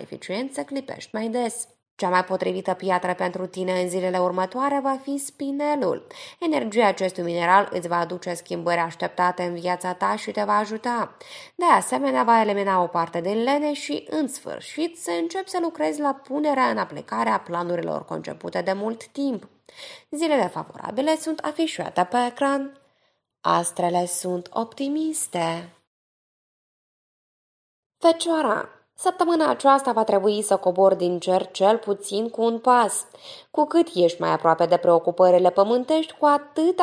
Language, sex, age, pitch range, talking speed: Romanian, female, 20-39, 185-290 Hz, 145 wpm